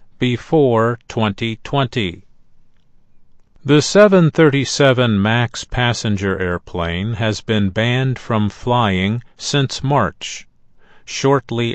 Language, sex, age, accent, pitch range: Chinese, male, 50-69, American, 105-130 Hz